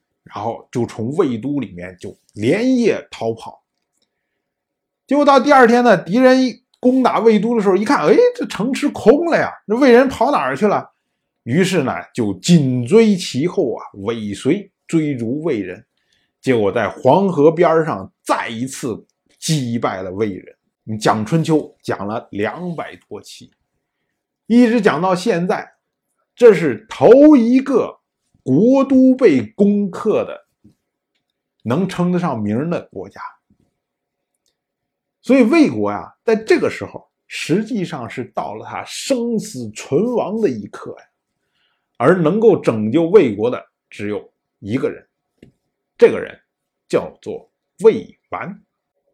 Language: Chinese